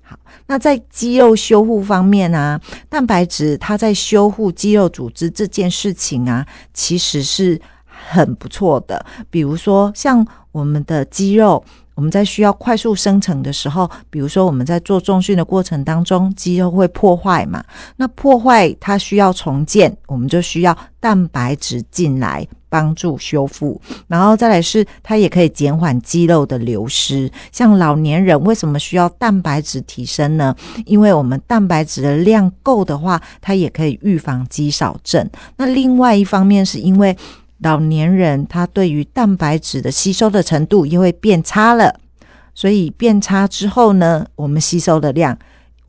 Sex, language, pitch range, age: female, Chinese, 150-205 Hz, 50-69